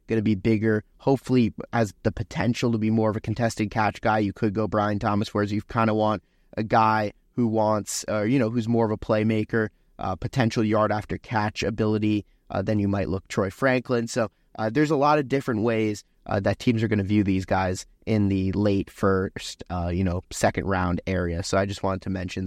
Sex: male